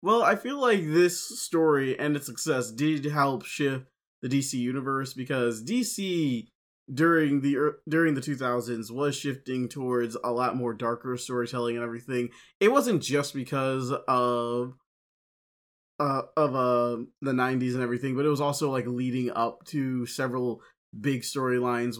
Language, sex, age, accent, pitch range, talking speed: English, male, 20-39, American, 120-145 Hz, 155 wpm